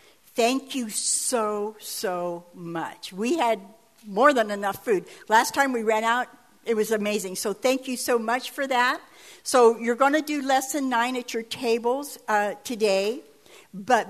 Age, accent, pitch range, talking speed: 60-79, American, 205-245 Hz, 165 wpm